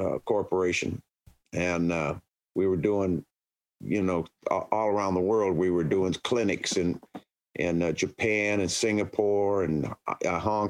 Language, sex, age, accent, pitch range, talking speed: English, male, 50-69, American, 95-125 Hz, 145 wpm